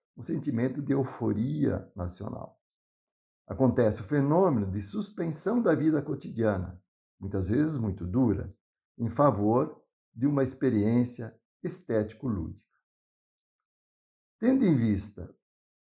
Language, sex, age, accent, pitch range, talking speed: Portuguese, male, 60-79, Brazilian, 105-145 Hz, 100 wpm